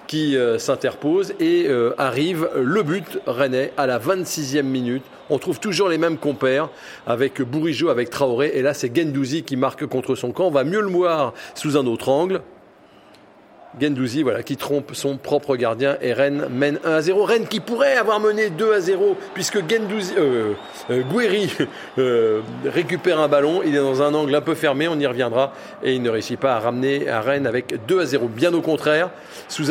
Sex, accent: male, French